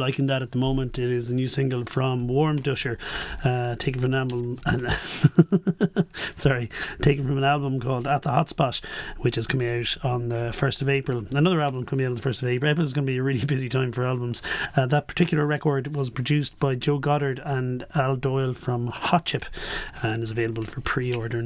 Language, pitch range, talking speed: English, 125-145 Hz, 215 wpm